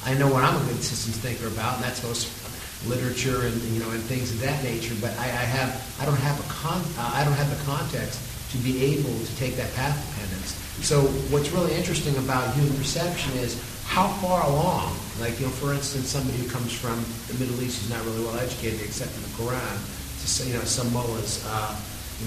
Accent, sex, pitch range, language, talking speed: American, male, 115-140 Hz, English, 225 wpm